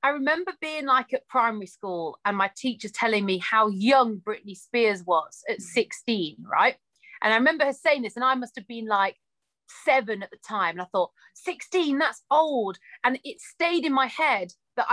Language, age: English, 30-49